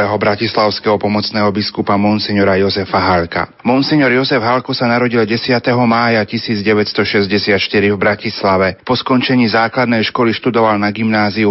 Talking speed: 120 wpm